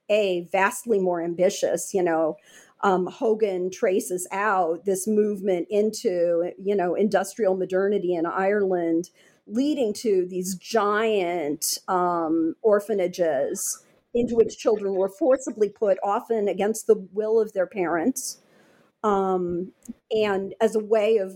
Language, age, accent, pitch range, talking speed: English, 50-69, American, 180-215 Hz, 125 wpm